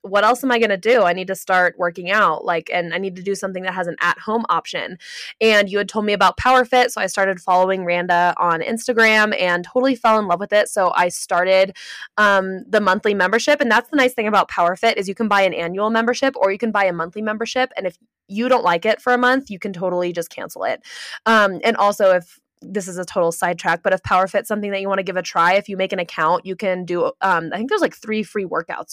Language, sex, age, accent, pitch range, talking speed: English, female, 20-39, American, 185-225 Hz, 260 wpm